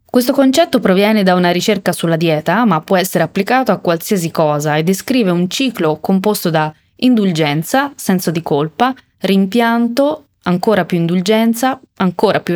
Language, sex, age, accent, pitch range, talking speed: Italian, female, 20-39, native, 165-205 Hz, 150 wpm